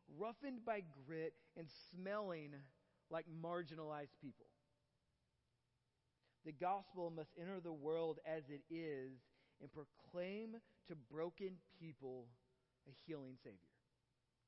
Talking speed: 105 wpm